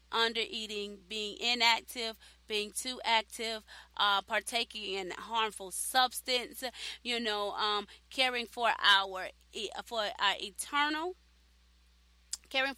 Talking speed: 105 wpm